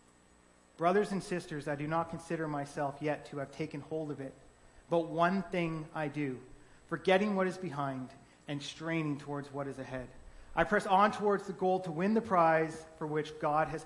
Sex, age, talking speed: male, 30-49, 190 wpm